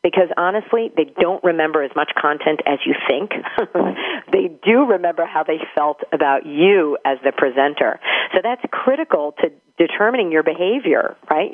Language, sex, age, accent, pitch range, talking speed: English, female, 40-59, American, 150-185 Hz, 155 wpm